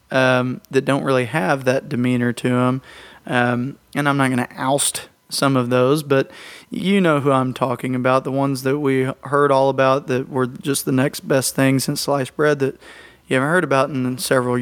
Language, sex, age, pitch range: English, male, 30-49, 130-150 Hz